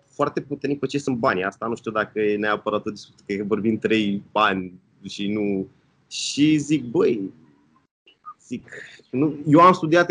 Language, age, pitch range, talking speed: Romanian, 20-39, 110-150 Hz, 155 wpm